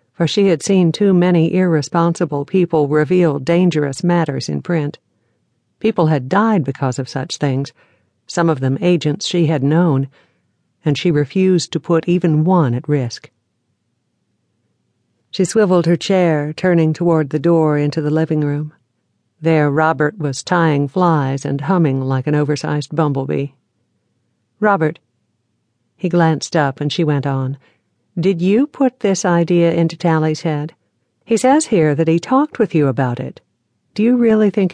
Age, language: 60-79, English